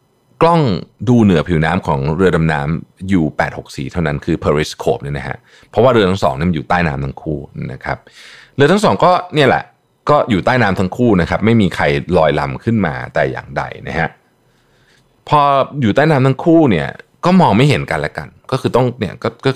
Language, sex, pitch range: Thai, male, 85-135 Hz